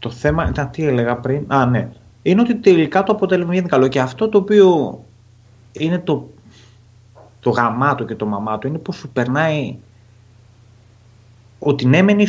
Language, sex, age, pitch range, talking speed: Greek, male, 30-49, 115-180 Hz, 170 wpm